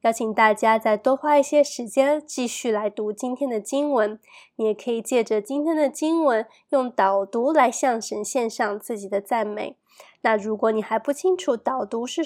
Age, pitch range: 20-39, 215-270 Hz